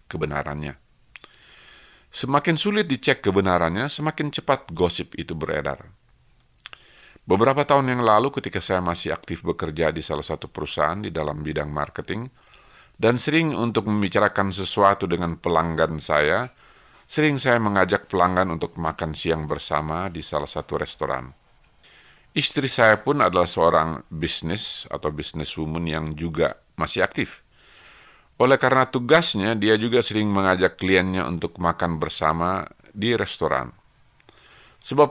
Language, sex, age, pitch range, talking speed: Indonesian, male, 50-69, 80-125 Hz, 125 wpm